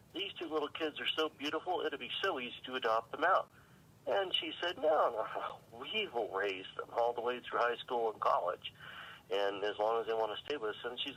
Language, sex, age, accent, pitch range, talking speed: English, male, 40-59, American, 115-140 Hz, 240 wpm